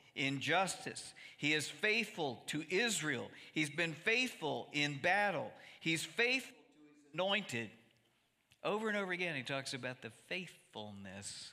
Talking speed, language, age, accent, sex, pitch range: 130 wpm, English, 50-69, American, male, 130-180 Hz